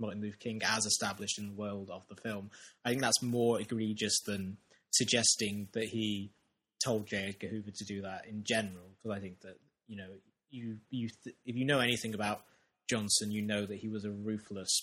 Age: 20-39